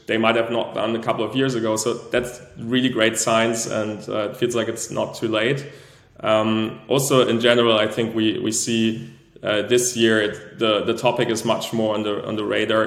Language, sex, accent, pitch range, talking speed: English, male, German, 110-120 Hz, 215 wpm